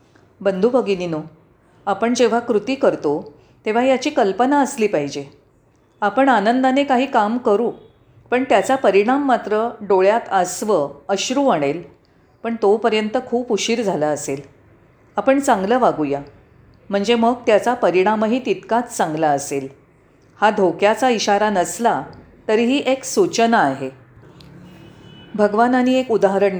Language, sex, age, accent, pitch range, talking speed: Marathi, female, 40-59, native, 175-245 Hz, 115 wpm